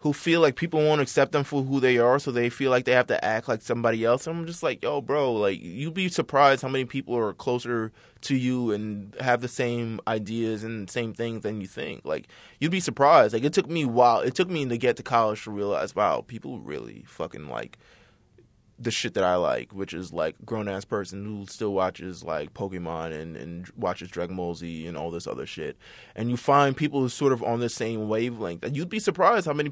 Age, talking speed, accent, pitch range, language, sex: 20-39, 240 wpm, American, 110-130 Hz, English, male